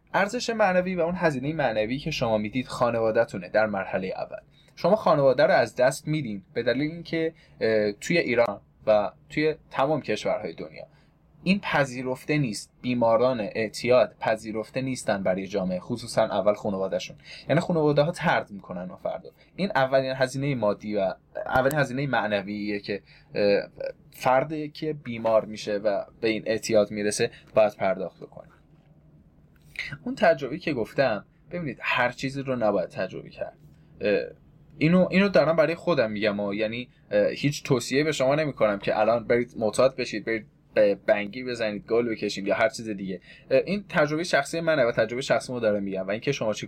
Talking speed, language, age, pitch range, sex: 160 wpm, Persian, 20-39, 110-160 Hz, male